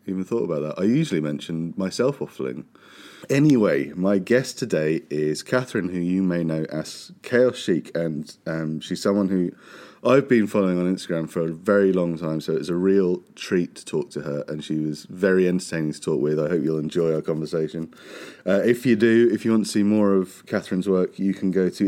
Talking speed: 210 wpm